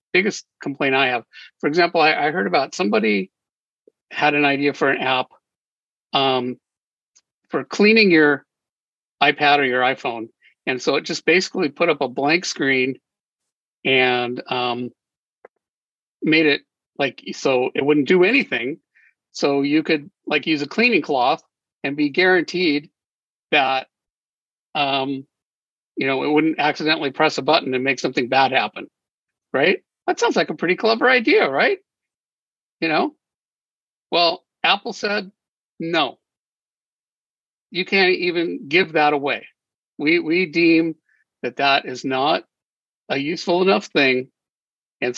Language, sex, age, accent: English, male, 50-69, American